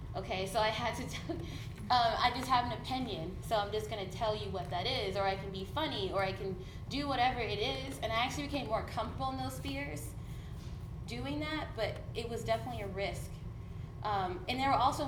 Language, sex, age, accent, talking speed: English, female, 20-39, American, 220 wpm